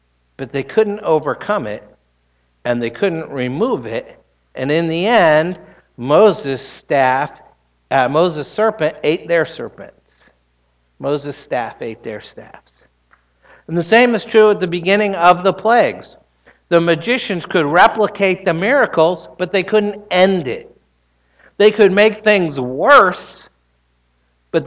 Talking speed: 135 wpm